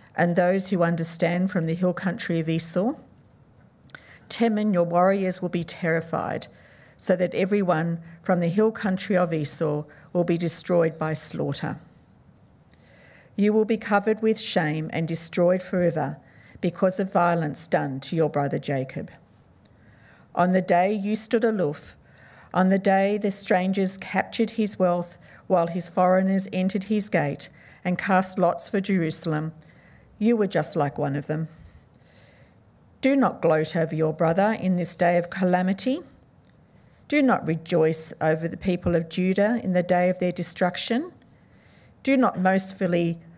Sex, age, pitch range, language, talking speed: female, 50-69, 160-195 Hz, English, 150 wpm